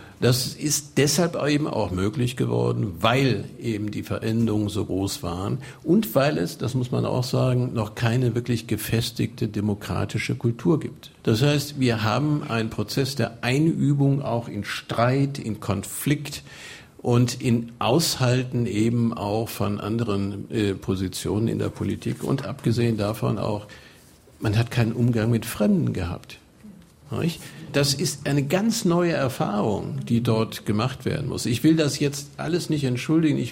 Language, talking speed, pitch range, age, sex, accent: German, 150 wpm, 105-130 Hz, 50-69, male, German